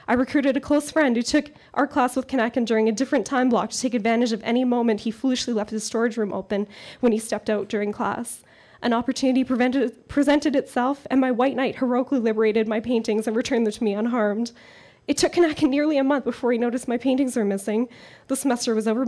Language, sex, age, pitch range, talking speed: English, female, 10-29, 225-275 Hz, 225 wpm